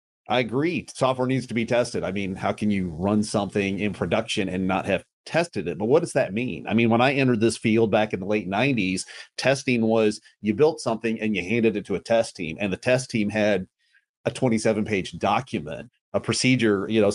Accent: American